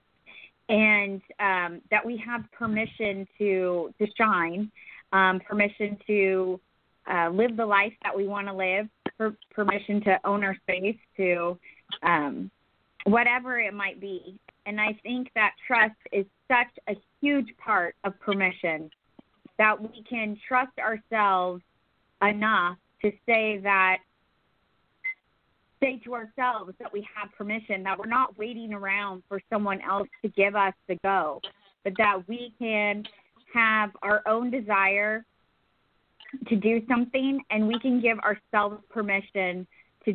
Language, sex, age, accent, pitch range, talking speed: English, female, 30-49, American, 190-220 Hz, 135 wpm